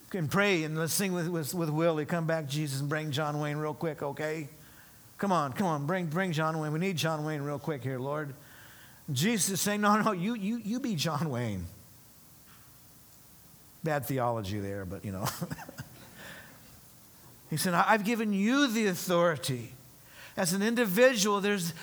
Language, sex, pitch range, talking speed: English, male, 150-200 Hz, 175 wpm